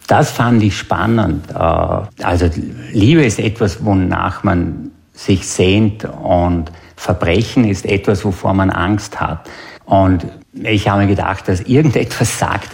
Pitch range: 90-105 Hz